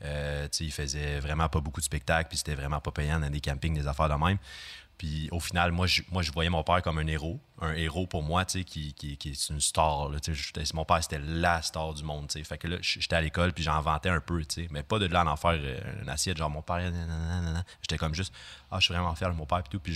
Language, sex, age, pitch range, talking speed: French, male, 30-49, 75-90 Hz, 265 wpm